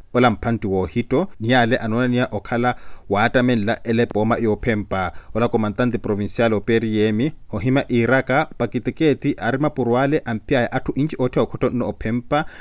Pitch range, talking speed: 115-140 Hz, 150 wpm